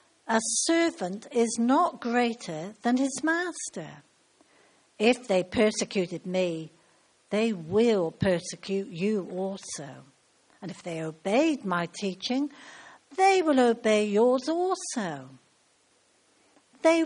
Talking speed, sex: 100 wpm, female